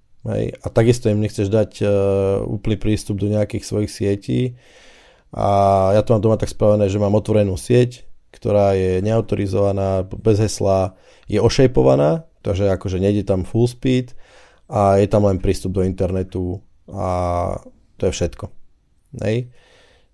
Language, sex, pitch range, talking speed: Slovak, male, 95-110 Hz, 145 wpm